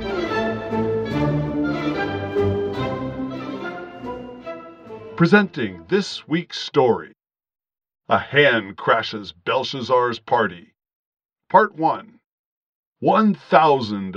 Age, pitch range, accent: 50-69, 105-160 Hz, American